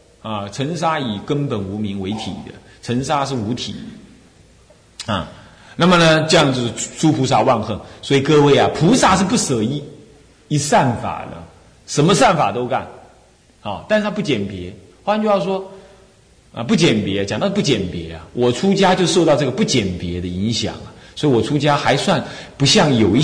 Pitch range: 120-195 Hz